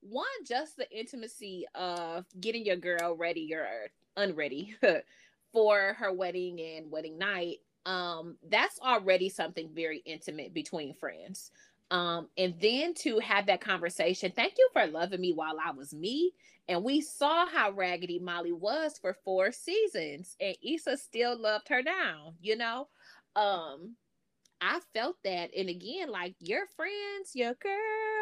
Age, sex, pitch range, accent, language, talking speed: 20-39, female, 170-245 Hz, American, English, 150 wpm